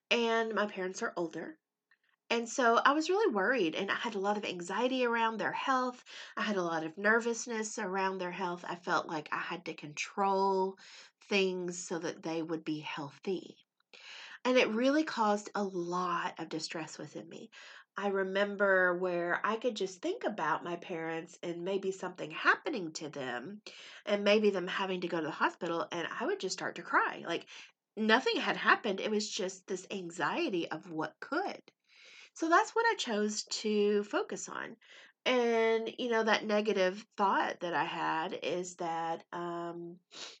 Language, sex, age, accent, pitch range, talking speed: English, female, 30-49, American, 175-220 Hz, 175 wpm